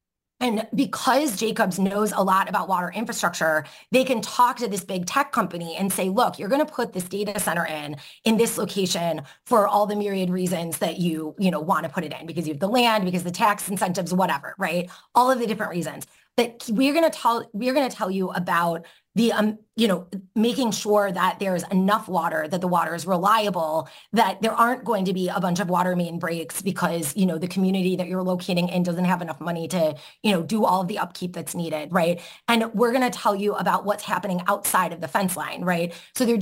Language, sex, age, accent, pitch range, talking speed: English, female, 20-39, American, 175-220 Hz, 230 wpm